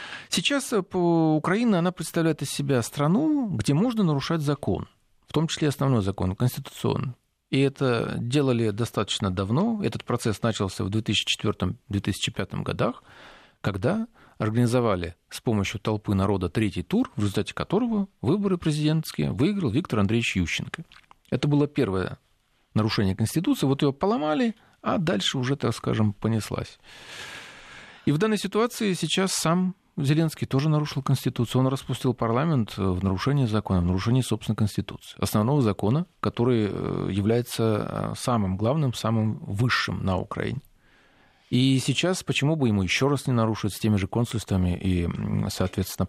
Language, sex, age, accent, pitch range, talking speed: Russian, male, 40-59, native, 110-160 Hz, 135 wpm